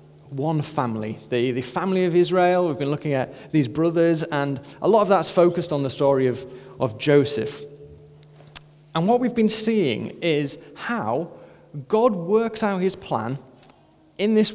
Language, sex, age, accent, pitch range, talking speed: English, male, 30-49, British, 145-195 Hz, 160 wpm